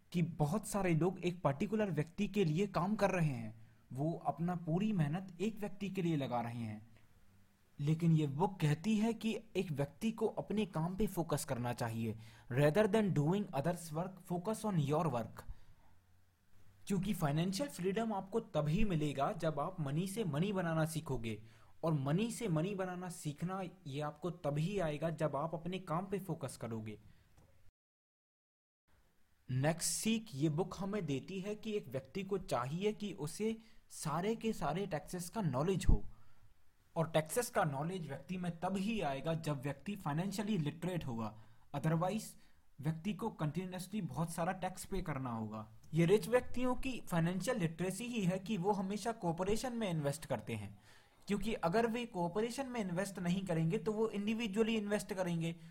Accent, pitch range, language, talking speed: native, 140-200 Hz, Hindi, 165 wpm